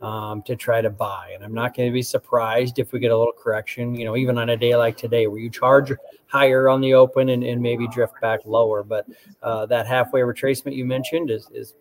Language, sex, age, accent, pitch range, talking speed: English, male, 40-59, American, 115-135 Hz, 245 wpm